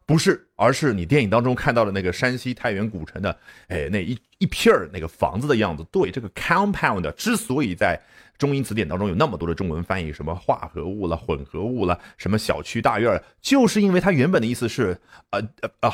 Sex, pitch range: male, 90-130 Hz